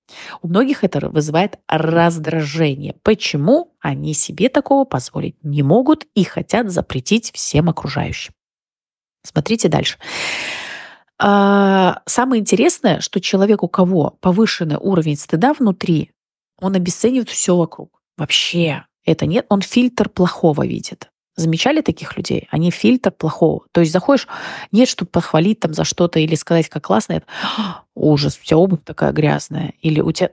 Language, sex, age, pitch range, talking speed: Russian, female, 30-49, 165-210 Hz, 135 wpm